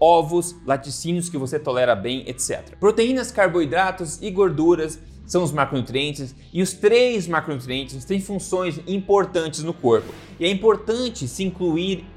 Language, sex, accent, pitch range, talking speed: Portuguese, male, Brazilian, 140-190 Hz, 140 wpm